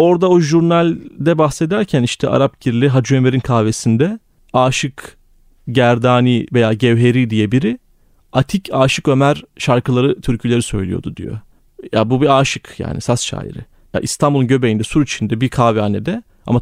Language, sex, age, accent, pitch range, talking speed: Turkish, male, 40-59, native, 110-145 Hz, 135 wpm